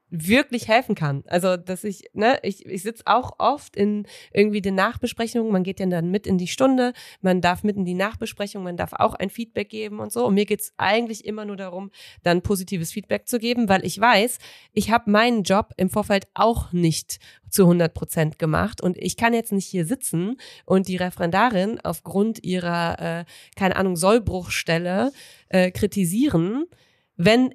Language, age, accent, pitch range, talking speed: German, 30-49, German, 180-220 Hz, 185 wpm